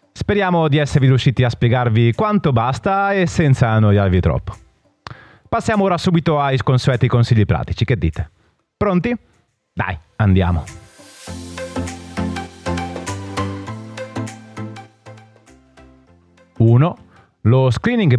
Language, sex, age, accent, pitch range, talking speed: Italian, male, 30-49, native, 100-145 Hz, 90 wpm